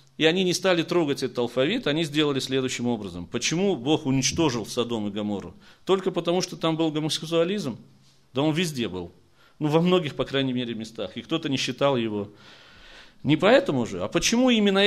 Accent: native